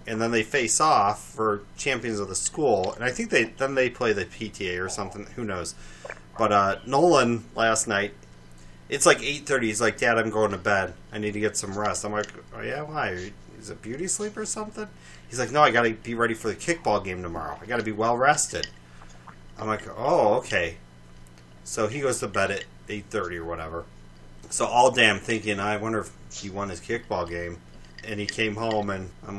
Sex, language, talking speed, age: male, English, 215 wpm, 30-49